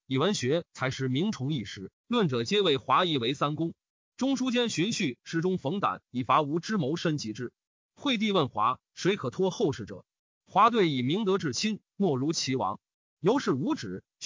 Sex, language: male, Chinese